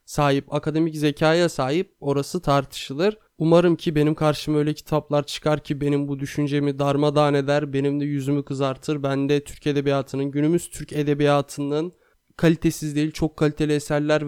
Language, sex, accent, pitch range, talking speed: Turkish, male, native, 145-165 Hz, 145 wpm